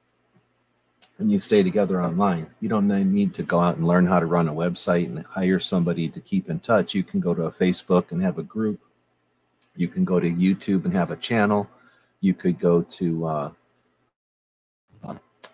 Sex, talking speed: male, 190 wpm